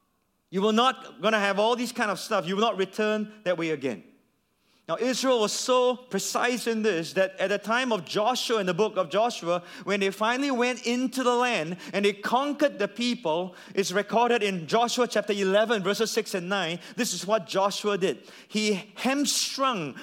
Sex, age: male, 30-49